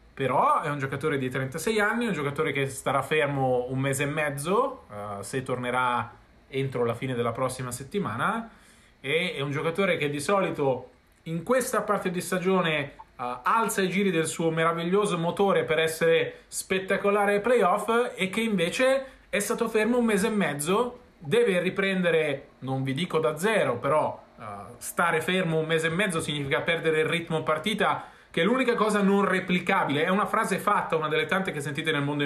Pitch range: 150-205 Hz